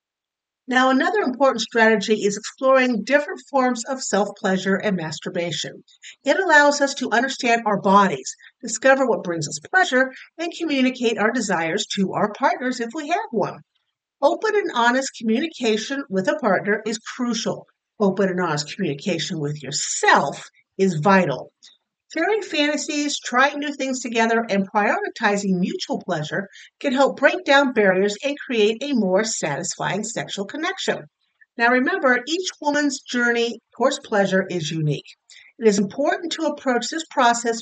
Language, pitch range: English, 200-285 Hz